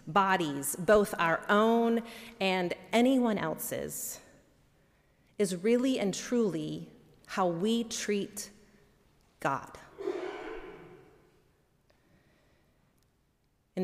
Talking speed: 70 wpm